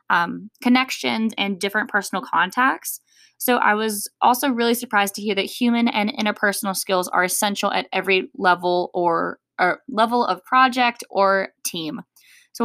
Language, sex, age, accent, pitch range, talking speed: English, female, 10-29, American, 195-240 Hz, 150 wpm